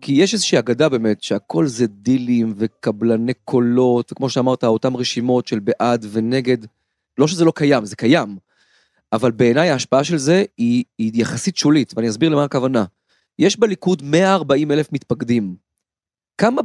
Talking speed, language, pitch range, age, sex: 150 wpm, Hebrew, 125-160 Hz, 30-49, male